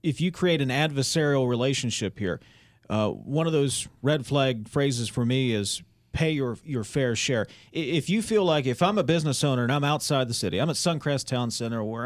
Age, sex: 40-59, male